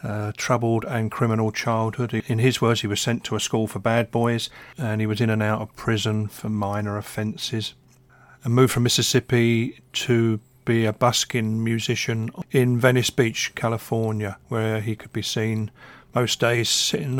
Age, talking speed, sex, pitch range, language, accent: 40-59, 170 wpm, male, 110-125 Hz, English, British